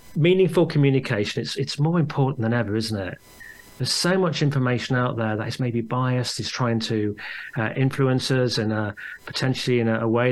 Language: English